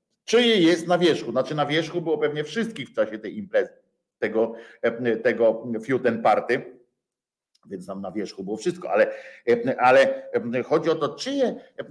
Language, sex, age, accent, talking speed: Polish, male, 50-69, native, 150 wpm